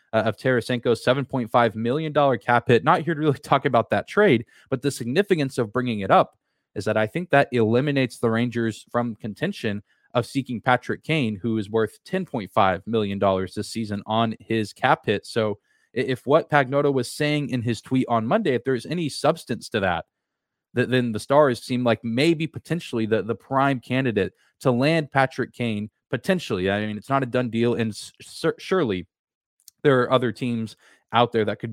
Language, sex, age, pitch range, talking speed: English, male, 20-39, 110-135 Hz, 185 wpm